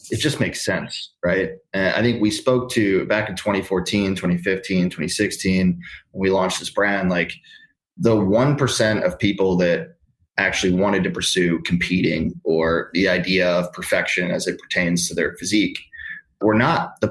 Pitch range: 90-110 Hz